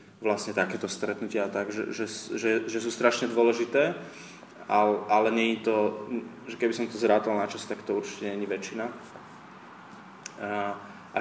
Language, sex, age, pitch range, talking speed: Slovak, male, 20-39, 105-120 Hz, 170 wpm